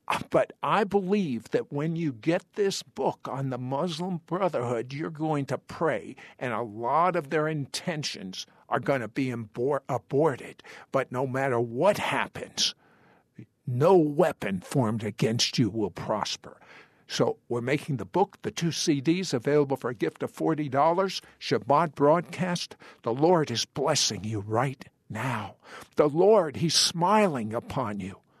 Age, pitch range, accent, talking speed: 60-79, 130-185 Hz, American, 145 wpm